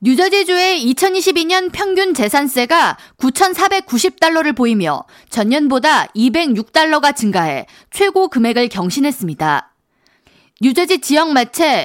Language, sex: Korean, female